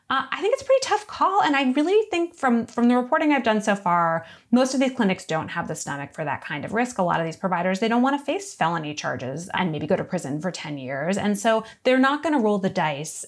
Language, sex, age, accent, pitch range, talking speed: English, female, 30-49, American, 165-230 Hz, 280 wpm